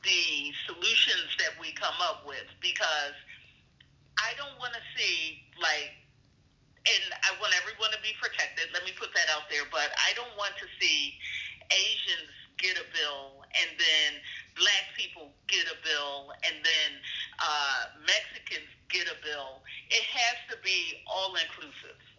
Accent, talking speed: American, 155 wpm